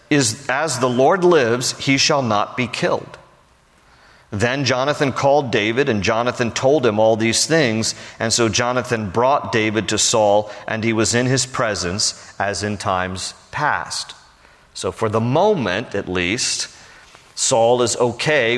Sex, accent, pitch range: male, American, 110-130 Hz